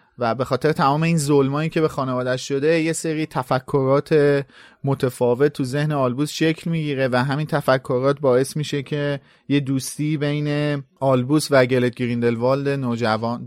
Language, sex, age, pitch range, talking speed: Persian, male, 30-49, 125-155 Hz, 150 wpm